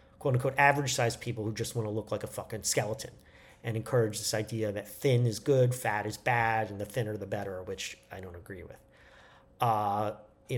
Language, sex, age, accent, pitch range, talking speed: English, male, 40-59, American, 110-130 Hz, 210 wpm